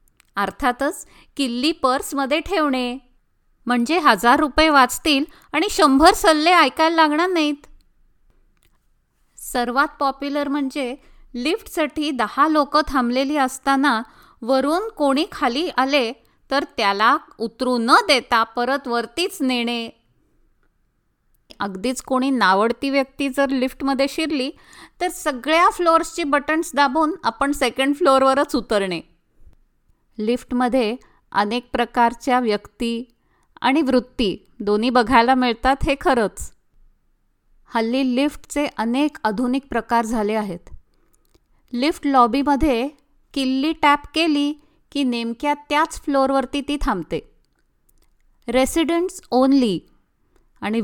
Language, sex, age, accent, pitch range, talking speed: Marathi, female, 20-39, native, 245-295 Hz, 90 wpm